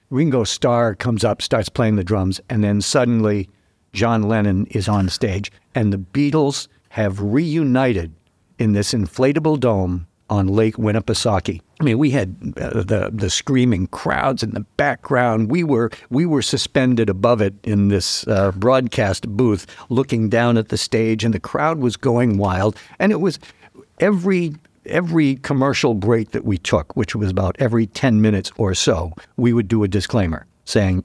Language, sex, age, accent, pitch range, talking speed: English, male, 60-79, American, 100-130 Hz, 165 wpm